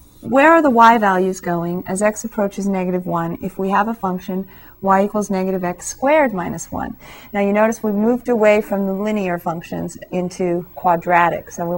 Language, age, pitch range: English, 30-49, 185-225 Hz